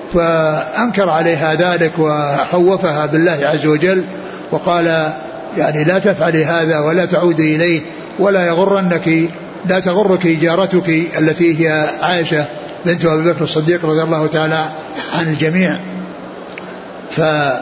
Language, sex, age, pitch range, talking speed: Arabic, male, 60-79, 160-185 Hz, 110 wpm